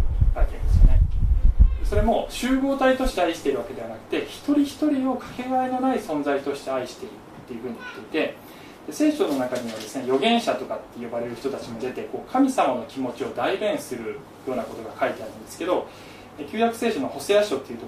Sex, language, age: male, Japanese, 20-39